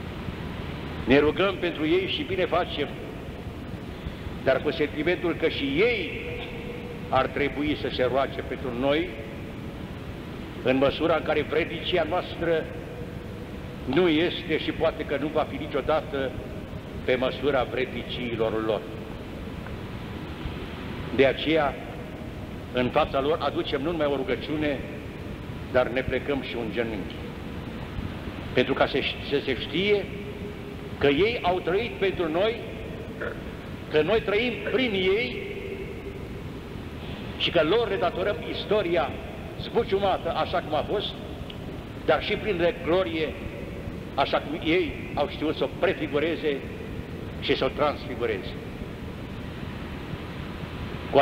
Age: 60-79